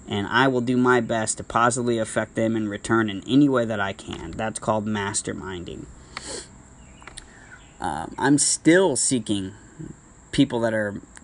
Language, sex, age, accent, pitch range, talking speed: English, male, 30-49, American, 105-130 Hz, 150 wpm